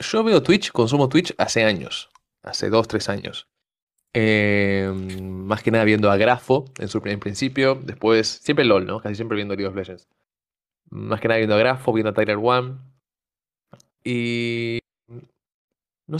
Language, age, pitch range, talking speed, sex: Spanish, 20-39, 105-125 Hz, 160 wpm, male